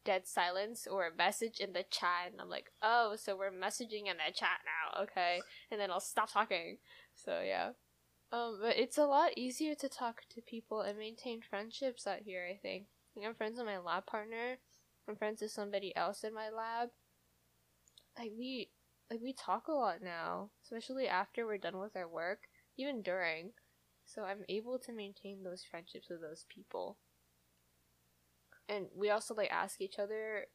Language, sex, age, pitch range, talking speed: English, female, 10-29, 175-230 Hz, 180 wpm